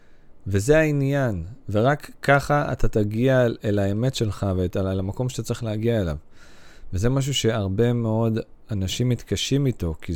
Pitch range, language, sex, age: 100-135 Hz, Hebrew, male, 30-49